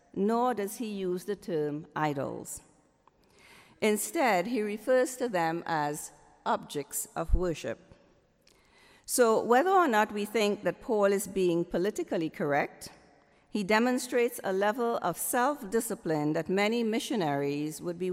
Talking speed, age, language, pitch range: 130 wpm, 50-69, English, 170-235 Hz